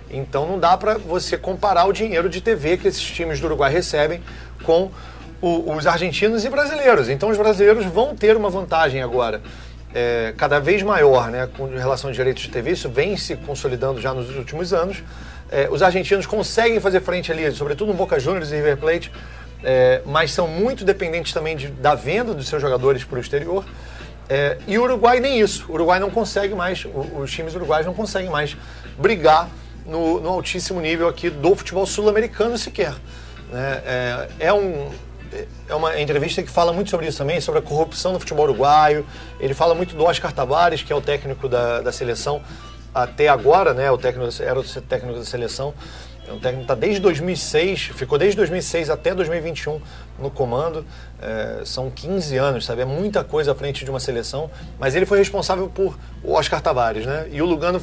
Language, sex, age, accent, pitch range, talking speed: Portuguese, male, 40-59, Brazilian, 130-190 Hz, 195 wpm